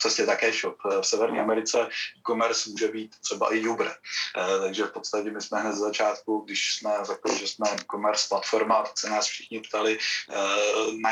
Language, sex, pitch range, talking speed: Czech, male, 100-120 Hz, 180 wpm